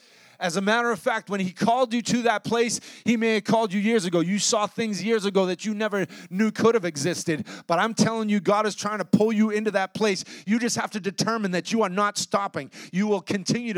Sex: male